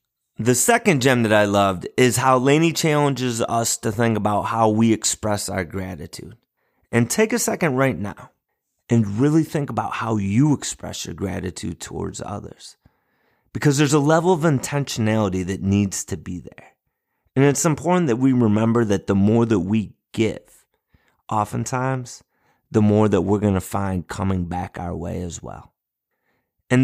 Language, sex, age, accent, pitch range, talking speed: English, male, 30-49, American, 100-130 Hz, 165 wpm